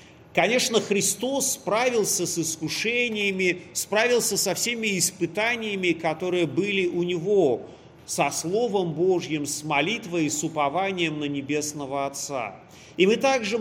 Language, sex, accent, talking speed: Russian, male, native, 120 wpm